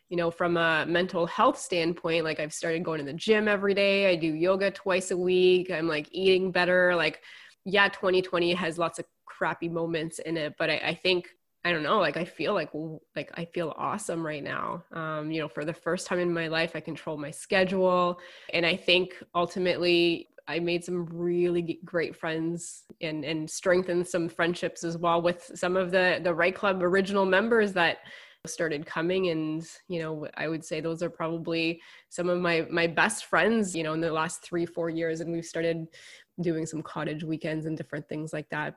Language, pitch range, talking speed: English, 165-185 Hz, 205 wpm